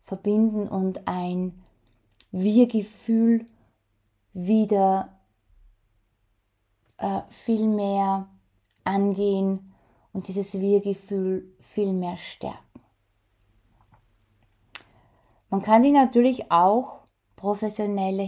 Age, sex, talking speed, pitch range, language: 20-39, female, 70 wpm, 180-220 Hz, German